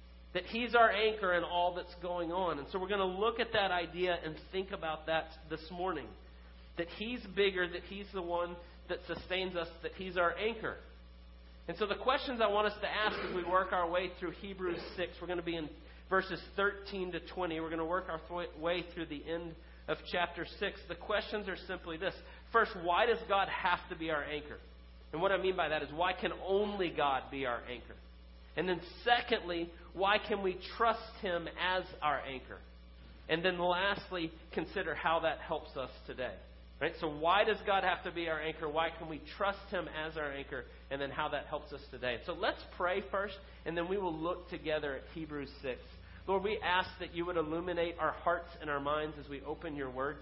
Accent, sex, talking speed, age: American, male, 215 wpm, 40-59